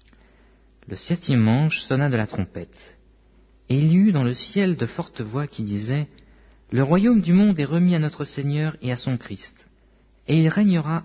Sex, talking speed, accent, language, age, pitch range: male, 190 wpm, French, French, 50-69, 110-150 Hz